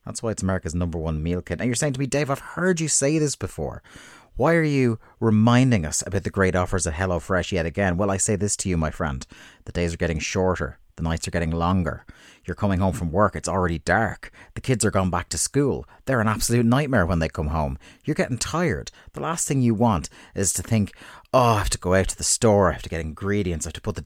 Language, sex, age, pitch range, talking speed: English, male, 30-49, 85-120 Hz, 260 wpm